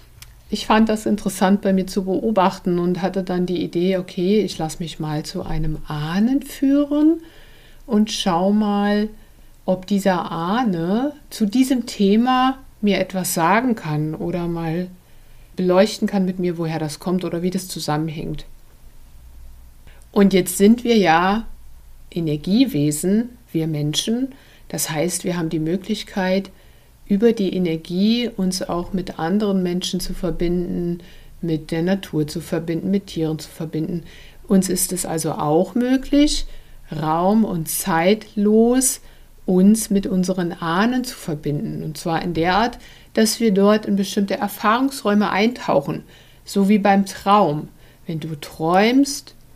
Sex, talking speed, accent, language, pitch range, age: female, 140 wpm, German, German, 165-205 Hz, 60-79